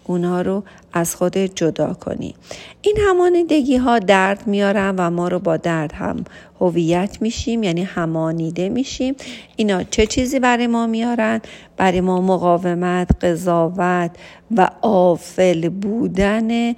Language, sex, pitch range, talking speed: Persian, female, 175-210 Hz, 125 wpm